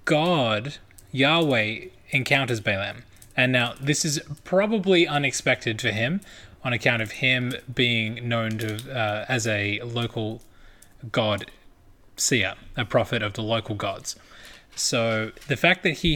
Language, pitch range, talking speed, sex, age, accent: English, 110-150 Hz, 135 wpm, male, 20-39, Australian